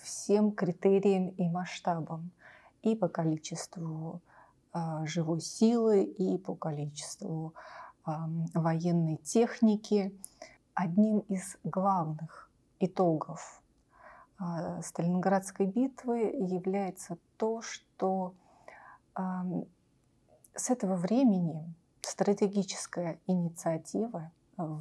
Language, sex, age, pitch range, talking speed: Russian, female, 30-49, 170-195 Hz, 70 wpm